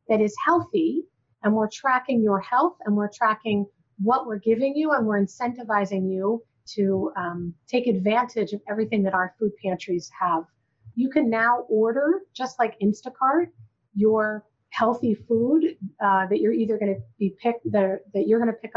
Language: English